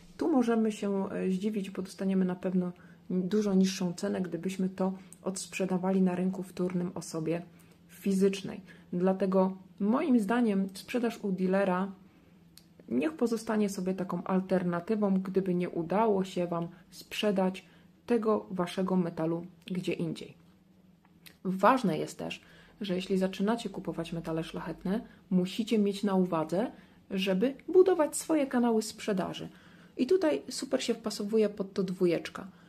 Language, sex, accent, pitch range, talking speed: Polish, female, native, 180-215 Hz, 125 wpm